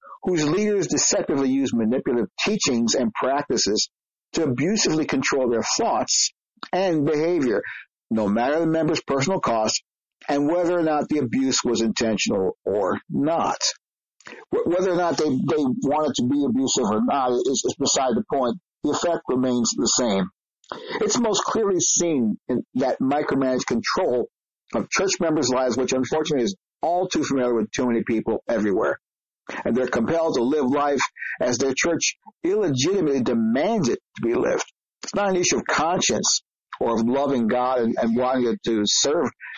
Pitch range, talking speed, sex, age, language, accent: 125-205 Hz, 160 wpm, male, 50-69, English, American